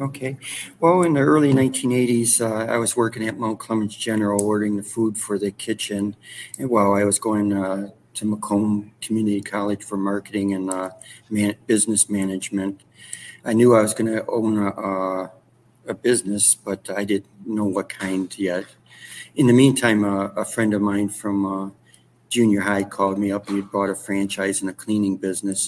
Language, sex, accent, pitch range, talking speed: English, male, American, 100-110 Hz, 180 wpm